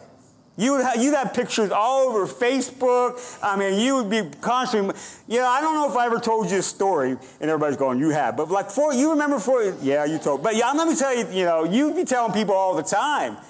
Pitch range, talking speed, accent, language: 175-245 Hz, 250 wpm, American, English